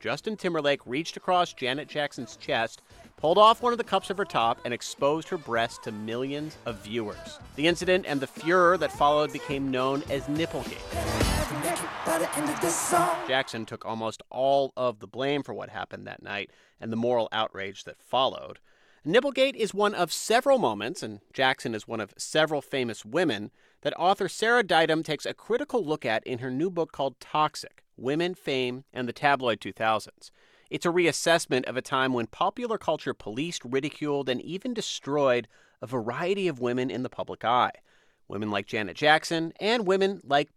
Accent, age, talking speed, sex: American, 30-49, 175 wpm, male